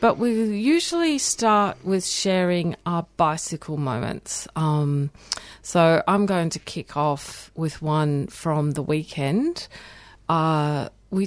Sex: female